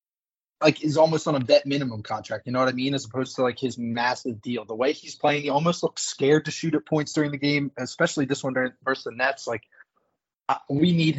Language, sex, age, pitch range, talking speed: English, male, 20-39, 125-145 Hz, 245 wpm